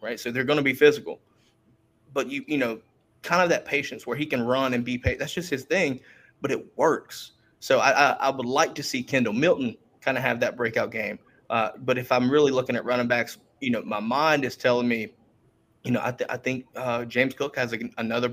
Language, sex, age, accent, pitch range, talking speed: English, male, 20-39, American, 120-140 Hz, 240 wpm